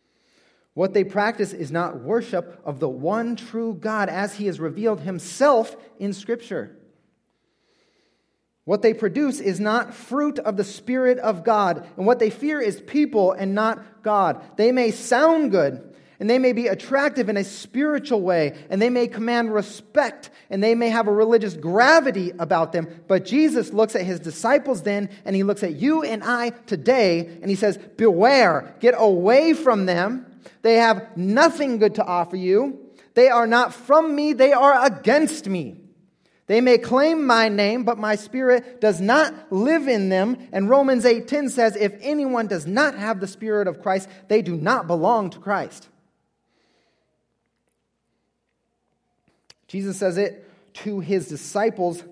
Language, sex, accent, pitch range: English, male, American, 190-245 Hz